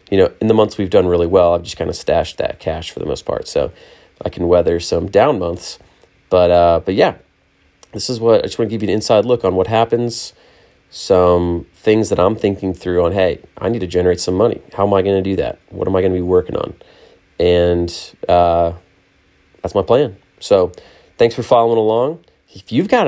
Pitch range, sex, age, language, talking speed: 90-110 Hz, male, 30-49, English, 230 wpm